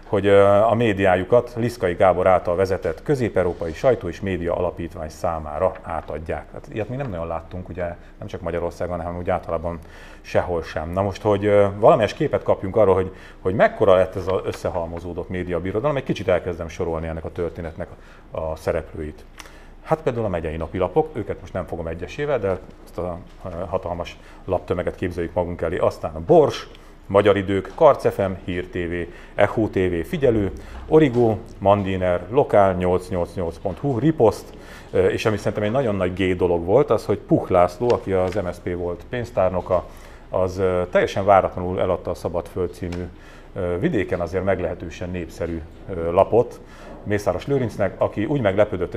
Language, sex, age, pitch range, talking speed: Hungarian, male, 40-59, 85-100 Hz, 150 wpm